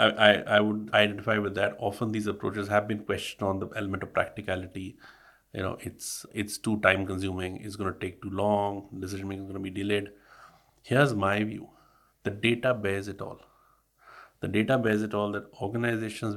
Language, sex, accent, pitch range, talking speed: English, male, Indian, 105-120 Hz, 185 wpm